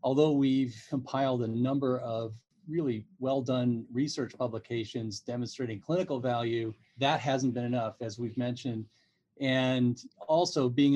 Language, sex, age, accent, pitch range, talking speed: English, male, 40-59, American, 125-150 Hz, 125 wpm